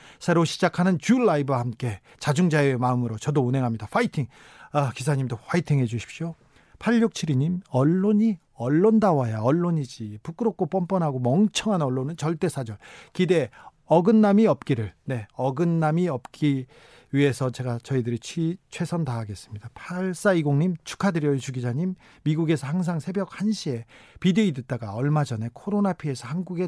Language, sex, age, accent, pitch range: Korean, male, 40-59, native, 125-175 Hz